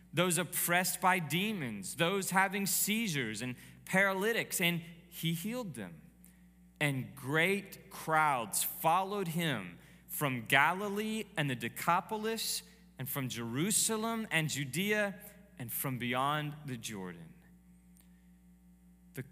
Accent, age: American, 20-39